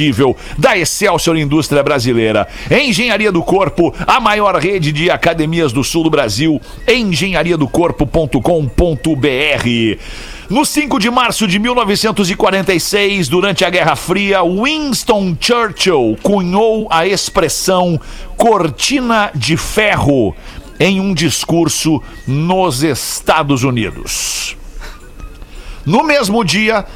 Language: Portuguese